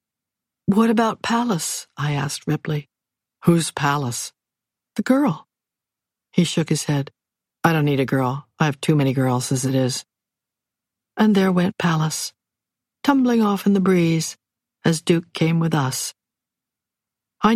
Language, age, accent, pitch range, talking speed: English, 60-79, American, 150-195 Hz, 145 wpm